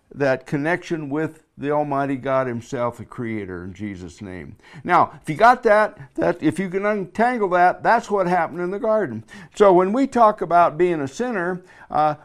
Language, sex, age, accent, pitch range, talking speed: English, male, 60-79, American, 155-200 Hz, 185 wpm